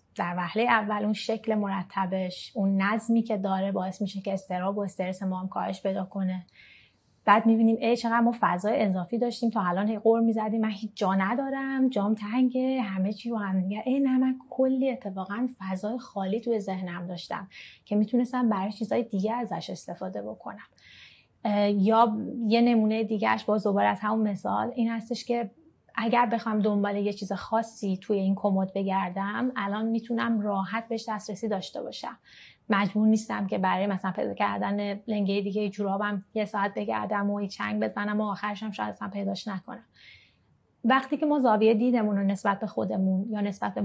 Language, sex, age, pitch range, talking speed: Persian, female, 30-49, 195-230 Hz, 170 wpm